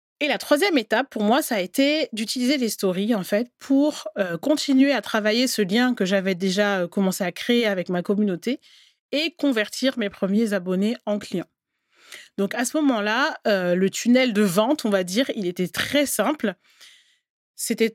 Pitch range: 190-250 Hz